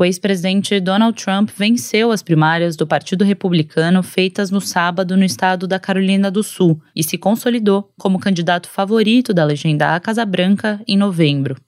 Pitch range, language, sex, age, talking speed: 165-205 Hz, Portuguese, female, 20-39, 165 wpm